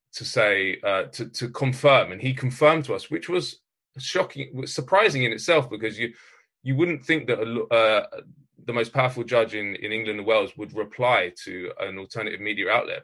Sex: male